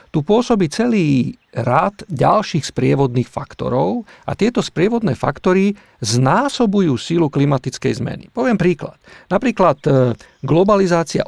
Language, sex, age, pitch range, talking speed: Slovak, male, 40-59, 130-190 Hz, 100 wpm